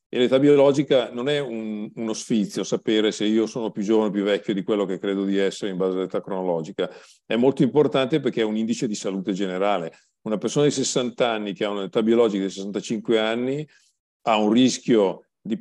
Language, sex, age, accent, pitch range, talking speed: Italian, male, 50-69, native, 100-120 Hz, 200 wpm